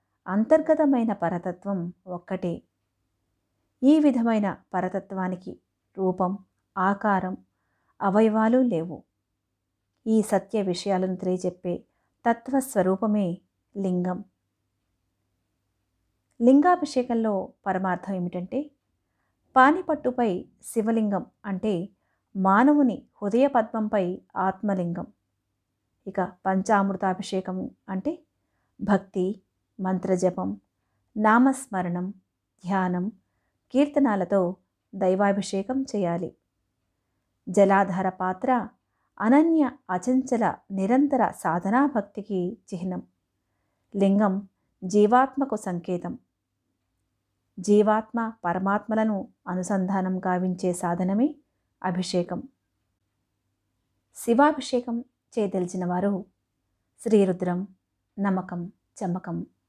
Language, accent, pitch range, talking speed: Telugu, native, 170-220 Hz, 60 wpm